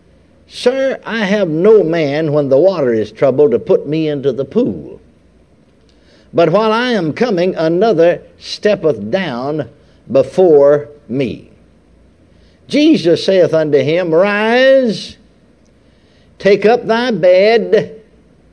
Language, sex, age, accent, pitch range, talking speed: English, male, 60-79, American, 160-240 Hz, 115 wpm